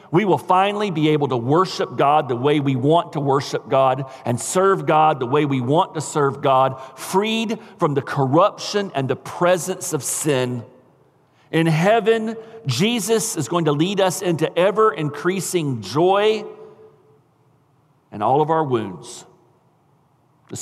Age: 50-69